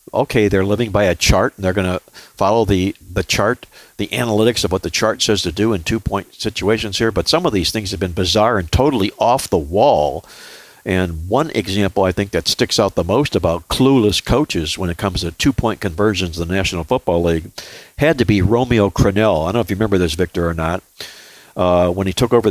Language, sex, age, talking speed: English, male, 60-79, 225 wpm